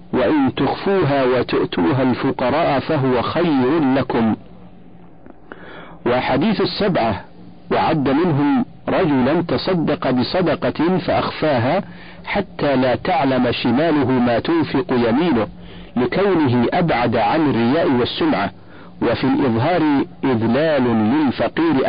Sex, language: male, Arabic